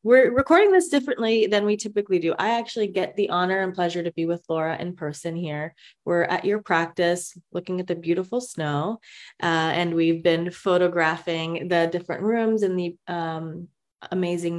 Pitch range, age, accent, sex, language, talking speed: 165-195 Hz, 20-39, American, female, English, 175 wpm